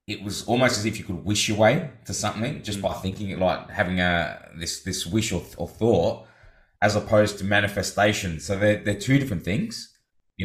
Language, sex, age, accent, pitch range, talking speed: English, male, 20-39, Australian, 90-110 Hz, 205 wpm